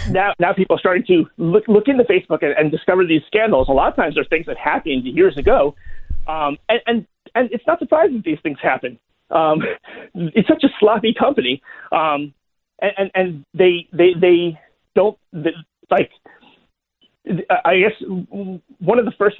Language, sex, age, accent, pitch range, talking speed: English, male, 40-59, American, 160-240 Hz, 175 wpm